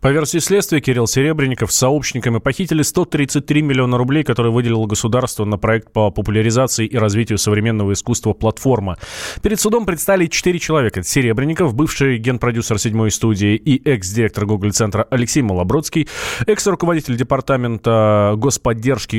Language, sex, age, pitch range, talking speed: Russian, male, 20-39, 110-155 Hz, 125 wpm